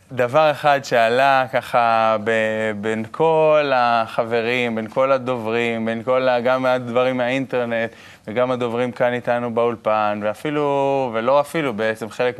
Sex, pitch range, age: male, 110-125 Hz, 20-39